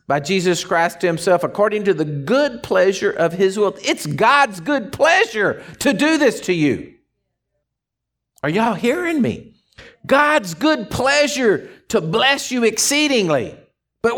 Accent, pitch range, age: American, 155-255 Hz, 50-69